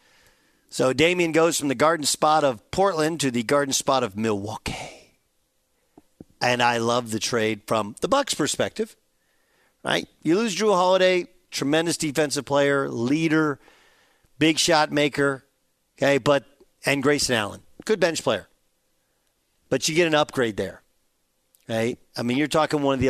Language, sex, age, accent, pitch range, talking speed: English, male, 50-69, American, 135-175 Hz, 150 wpm